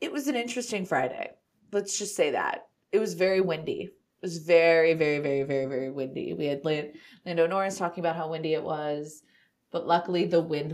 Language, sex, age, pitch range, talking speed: English, female, 30-49, 150-205 Hz, 195 wpm